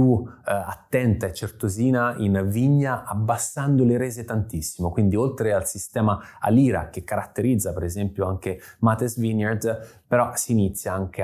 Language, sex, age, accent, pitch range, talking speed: Italian, male, 20-39, native, 95-120 Hz, 140 wpm